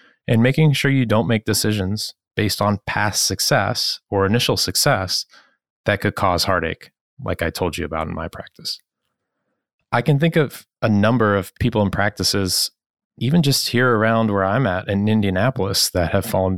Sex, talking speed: male, 175 wpm